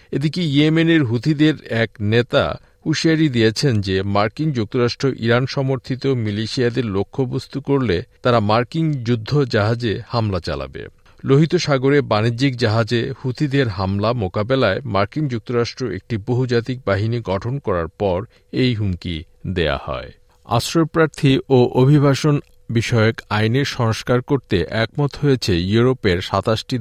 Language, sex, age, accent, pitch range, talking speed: Bengali, male, 50-69, native, 105-135 Hz, 110 wpm